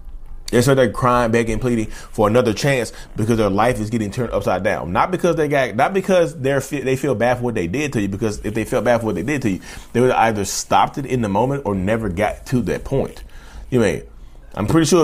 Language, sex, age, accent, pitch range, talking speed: English, male, 30-49, American, 100-140 Hz, 265 wpm